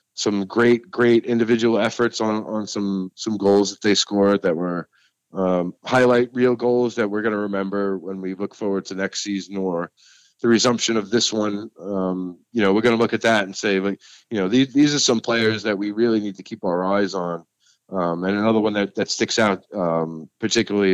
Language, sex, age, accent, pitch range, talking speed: English, male, 30-49, American, 95-110 Hz, 215 wpm